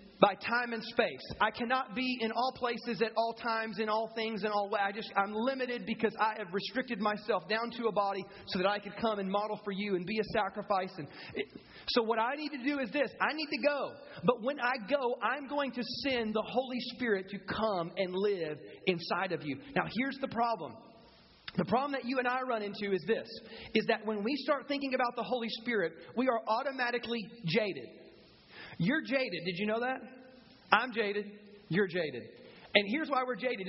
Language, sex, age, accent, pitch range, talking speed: English, male, 30-49, American, 210-265 Hz, 210 wpm